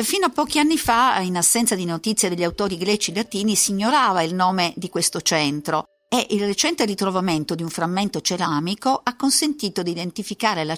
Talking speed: 190 wpm